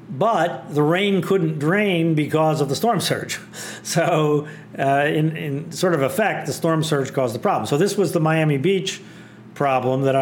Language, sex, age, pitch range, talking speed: English, male, 50-69, 120-155 Hz, 180 wpm